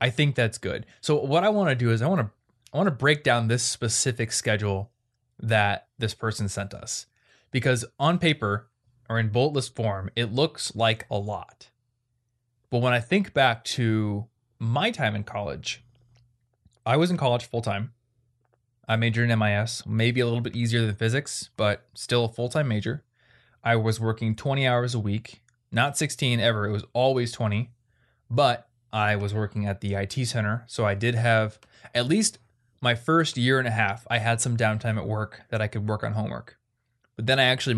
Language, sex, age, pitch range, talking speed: English, male, 20-39, 110-120 Hz, 195 wpm